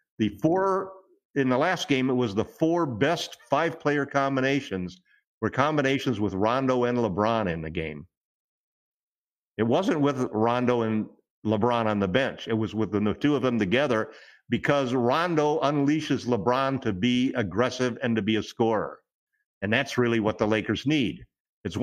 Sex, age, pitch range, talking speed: male, 50-69, 110-145 Hz, 160 wpm